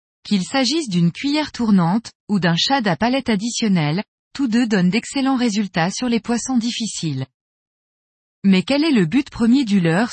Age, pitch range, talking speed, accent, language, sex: 20-39, 180-245 Hz, 165 wpm, French, French, female